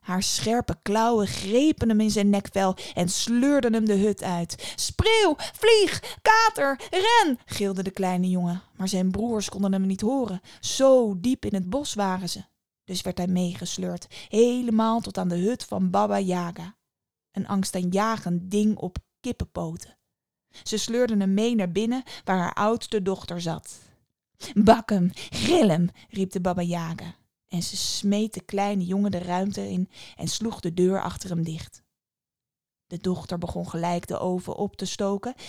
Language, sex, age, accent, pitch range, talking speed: Dutch, female, 20-39, Dutch, 180-225 Hz, 165 wpm